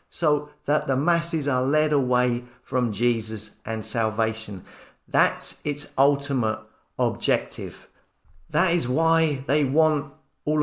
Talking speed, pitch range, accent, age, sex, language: 120 wpm, 125-150 Hz, British, 40-59, male, English